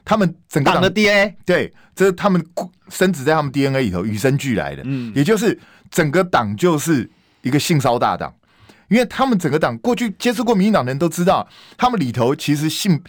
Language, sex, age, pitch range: Chinese, male, 20-39, 135-190 Hz